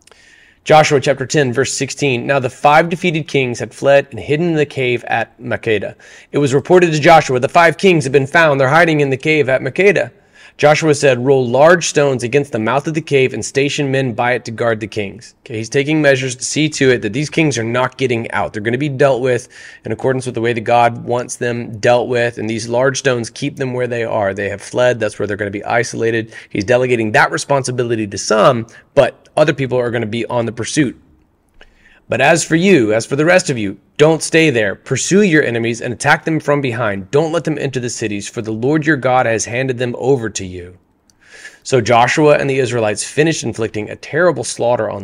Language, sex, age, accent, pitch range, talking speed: English, male, 30-49, American, 115-145 Hz, 230 wpm